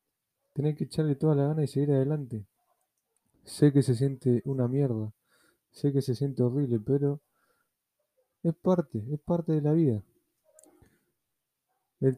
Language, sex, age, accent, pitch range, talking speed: Spanish, male, 20-39, Argentinian, 120-150 Hz, 145 wpm